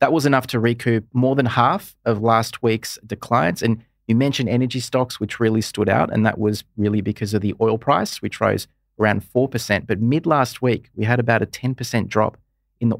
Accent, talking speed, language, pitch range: Australian, 210 wpm, English, 105-125 Hz